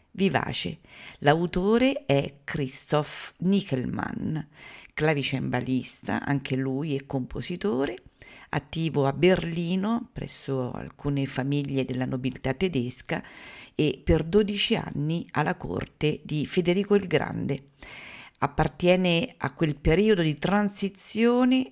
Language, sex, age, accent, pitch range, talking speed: Italian, female, 50-69, native, 140-195 Hz, 95 wpm